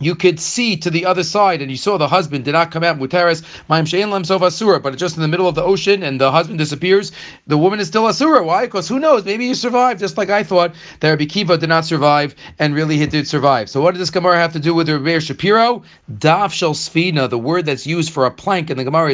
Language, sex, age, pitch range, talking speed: English, male, 40-59, 150-185 Hz, 240 wpm